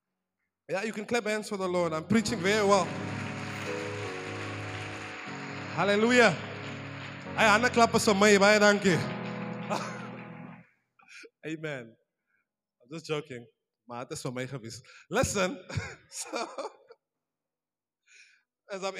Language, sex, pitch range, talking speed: English, male, 185-280 Hz, 65 wpm